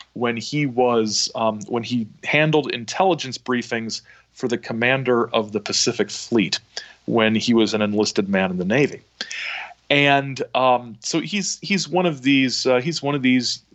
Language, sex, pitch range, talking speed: English, male, 105-130 Hz, 165 wpm